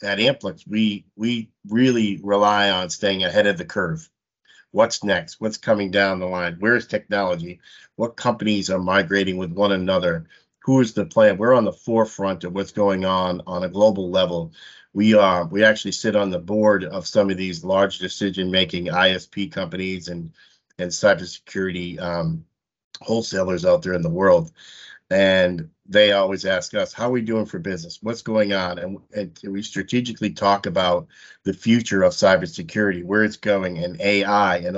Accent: American